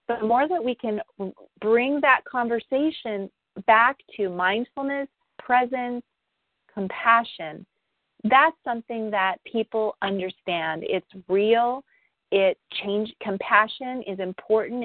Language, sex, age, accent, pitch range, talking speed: English, female, 40-59, American, 190-235 Hz, 105 wpm